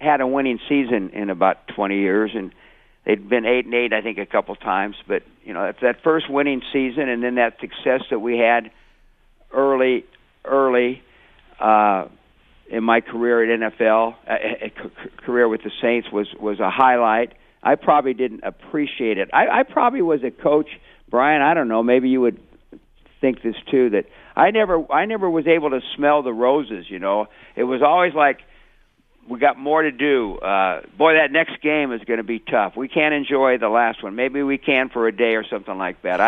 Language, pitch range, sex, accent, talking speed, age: English, 115-145 Hz, male, American, 200 wpm, 50-69